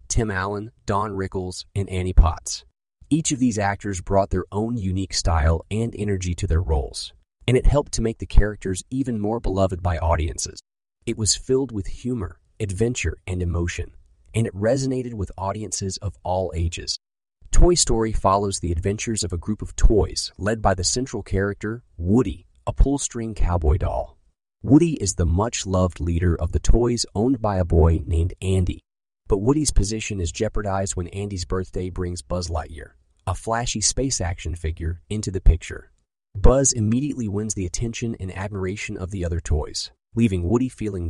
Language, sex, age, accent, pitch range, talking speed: English, male, 40-59, American, 85-110 Hz, 170 wpm